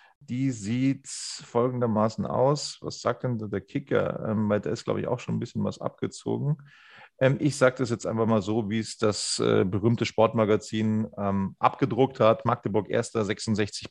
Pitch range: 115-150 Hz